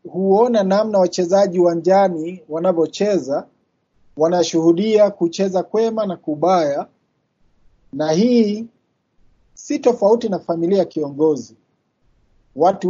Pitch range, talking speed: 155-190 Hz, 90 wpm